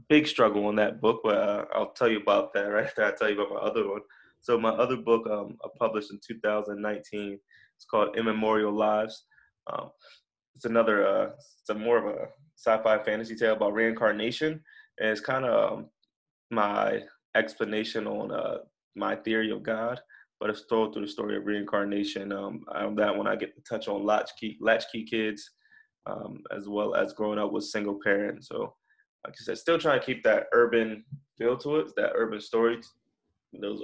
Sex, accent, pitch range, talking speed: male, American, 105-120 Hz, 185 wpm